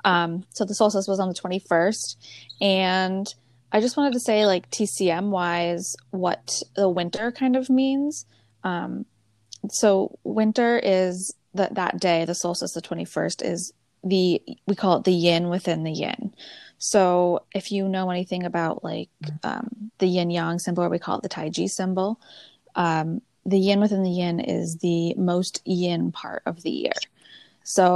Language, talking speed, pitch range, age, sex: English, 165 wpm, 170-210 Hz, 20-39, female